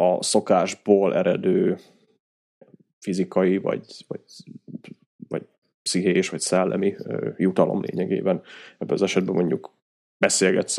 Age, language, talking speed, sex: 30-49, Hungarian, 100 wpm, male